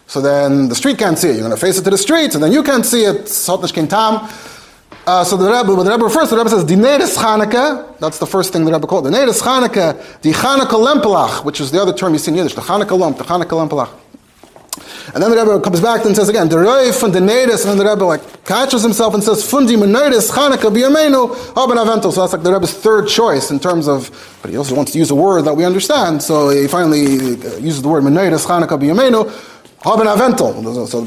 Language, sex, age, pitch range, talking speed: English, male, 30-49, 155-230 Hz, 225 wpm